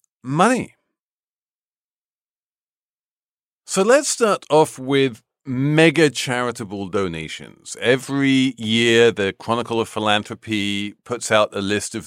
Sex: male